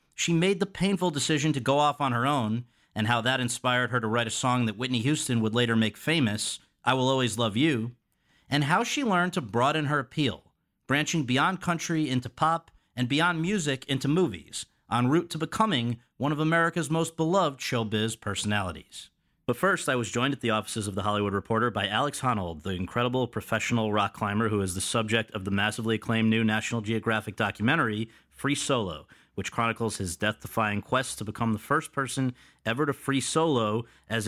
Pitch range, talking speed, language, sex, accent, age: 110-140 Hz, 195 wpm, English, male, American, 40-59